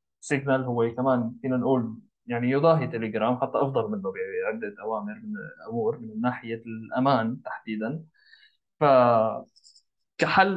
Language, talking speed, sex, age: Arabic, 120 wpm, male, 20-39